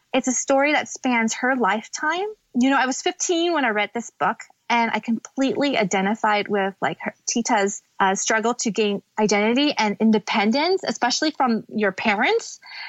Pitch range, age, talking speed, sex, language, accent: 205-260 Hz, 20-39, 165 wpm, female, English, American